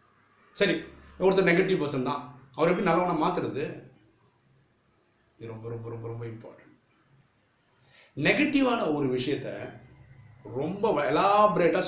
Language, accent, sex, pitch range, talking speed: Tamil, native, male, 125-170 Hz, 65 wpm